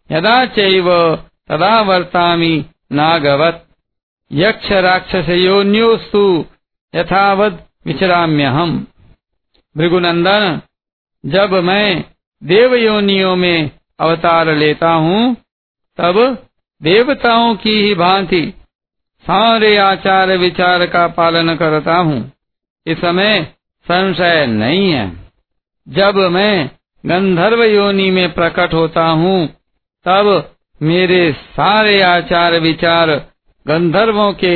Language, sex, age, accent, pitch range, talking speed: Hindi, male, 60-79, native, 160-195 Hz, 80 wpm